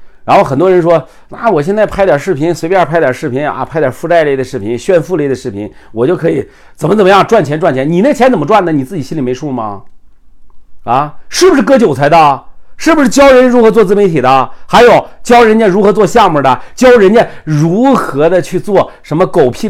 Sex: male